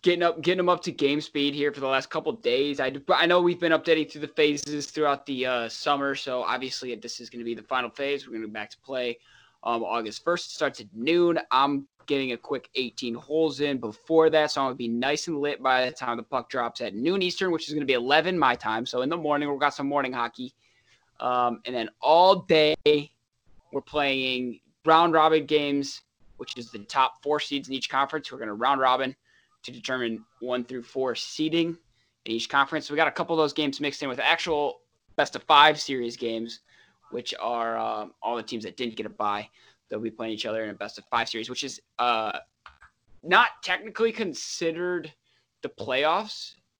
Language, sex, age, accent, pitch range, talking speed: English, male, 20-39, American, 120-155 Hz, 220 wpm